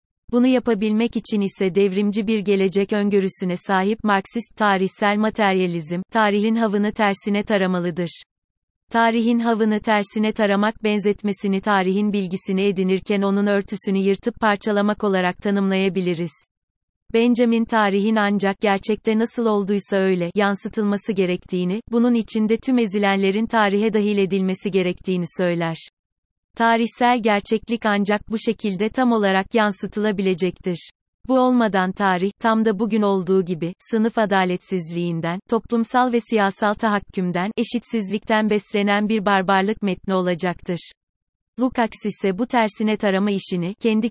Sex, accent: female, native